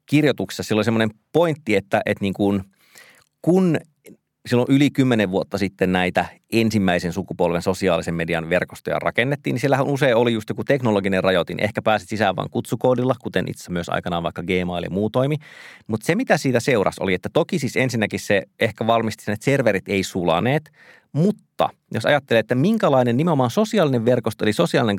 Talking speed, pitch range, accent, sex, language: 170 wpm, 100-135 Hz, native, male, Finnish